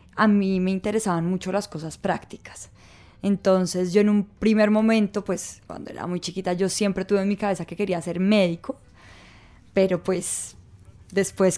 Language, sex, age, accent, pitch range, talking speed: Spanish, female, 10-29, Colombian, 170-210 Hz, 165 wpm